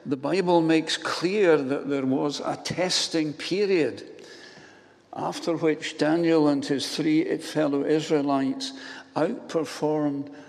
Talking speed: 110 wpm